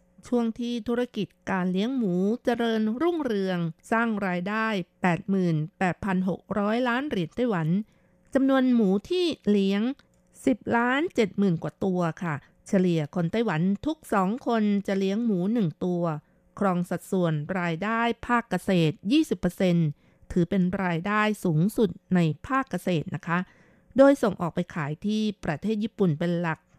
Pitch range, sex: 175-220 Hz, female